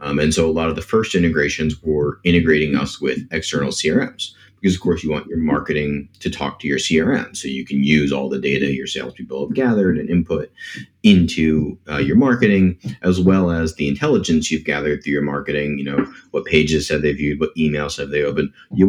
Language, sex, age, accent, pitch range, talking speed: English, male, 30-49, American, 70-80 Hz, 215 wpm